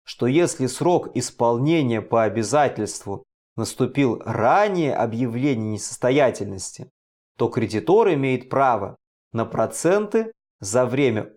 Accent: native